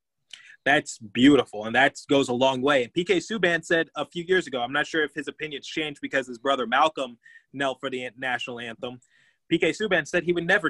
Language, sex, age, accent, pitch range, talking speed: English, male, 20-39, American, 125-150 Hz, 210 wpm